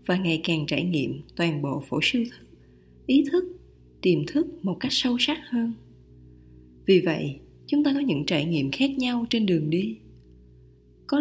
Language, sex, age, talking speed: Vietnamese, female, 20-39, 175 wpm